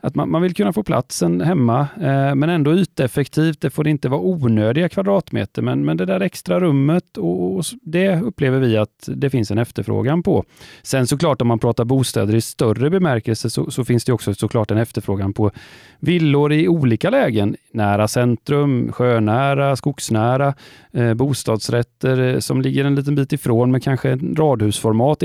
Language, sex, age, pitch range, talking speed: Swedish, male, 30-49, 115-150 Hz, 175 wpm